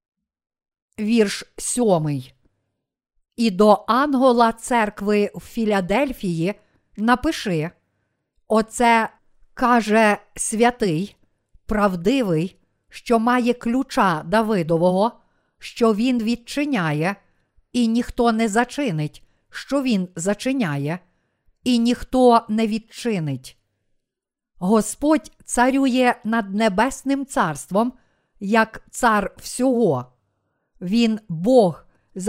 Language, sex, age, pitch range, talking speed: Ukrainian, female, 50-69, 195-245 Hz, 80 wpm